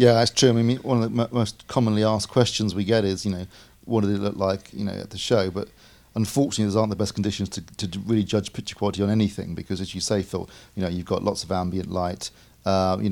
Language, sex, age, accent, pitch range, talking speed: English, male, 40-59, British, 95-110 Hz, 265 wpm